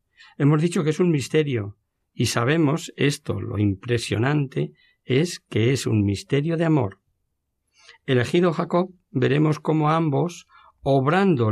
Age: 60-79